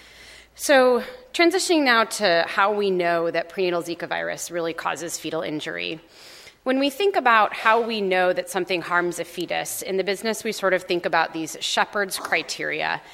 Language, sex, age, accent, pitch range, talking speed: English, female, 30-49, American, 165-205 Hz, 175 wpm